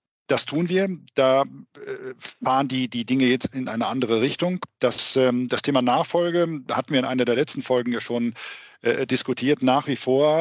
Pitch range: 120-140 Hz